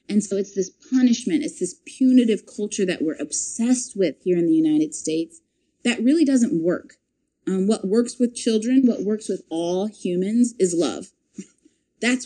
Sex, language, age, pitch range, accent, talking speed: female, English, 30-49, 175-250 Hz, American, 170 wpm